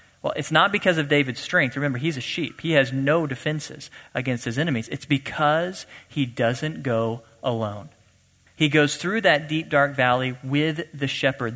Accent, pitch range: American, 130-155 Hz